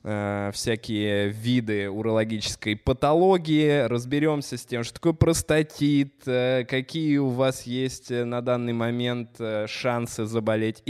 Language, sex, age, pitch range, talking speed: Russian, male, 20-39, 115-140 Hz, 105 wpm